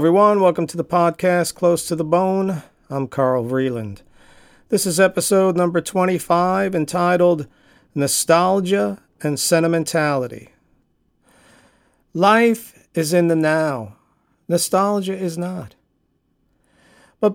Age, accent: 50-69, American